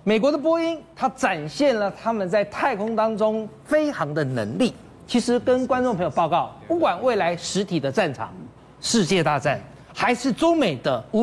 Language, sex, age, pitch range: Chinese, male, 40-59, 195-300 Hz